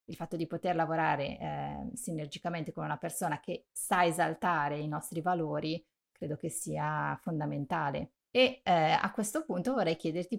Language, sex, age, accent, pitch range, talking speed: Italian, female, 30-49, native, 155-190 Hz, 155 wpm